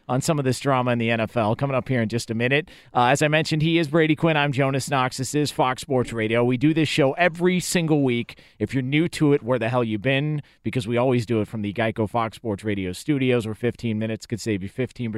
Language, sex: English, male